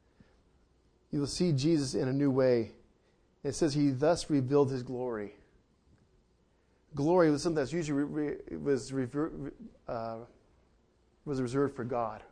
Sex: male